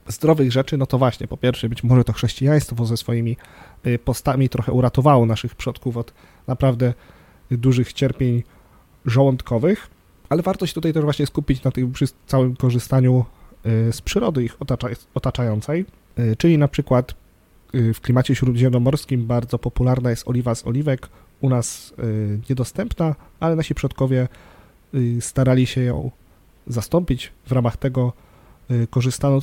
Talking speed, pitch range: 135 wpm, 115-135 Hz